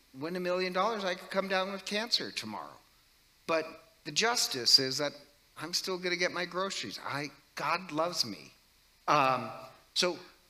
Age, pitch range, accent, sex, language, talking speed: 50-69, 145-185 Hz, American, male, English, 160 wpm